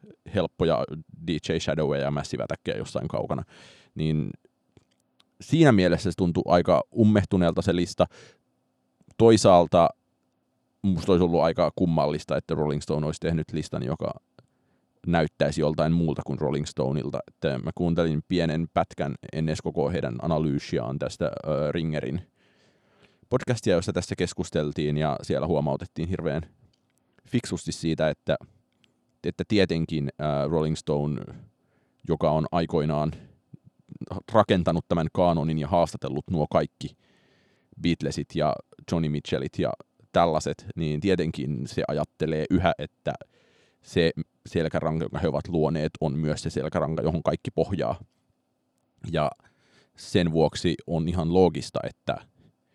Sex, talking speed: male, 115 wpm